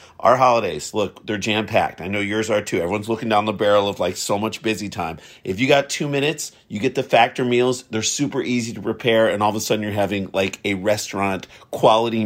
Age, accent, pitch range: 50-69, American, 100-120 Hz